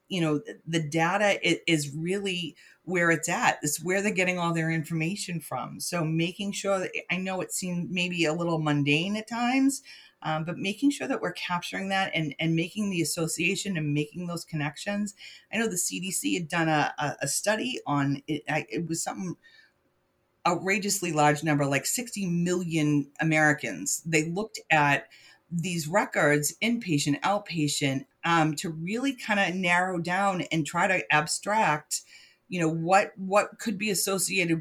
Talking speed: 165 wpm